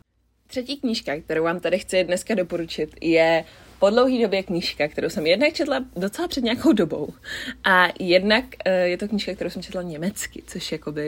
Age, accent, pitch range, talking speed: 20-39, native, 165-215 Hz, 185 wpm